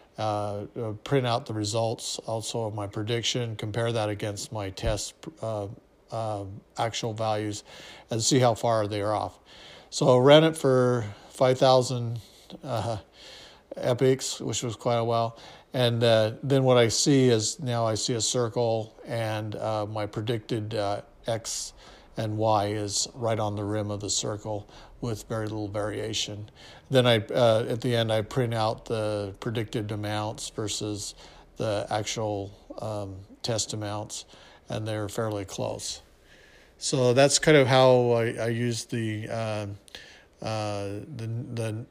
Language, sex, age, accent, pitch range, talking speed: English, male, 50-69, American, 105-120 Hz, 150 wpm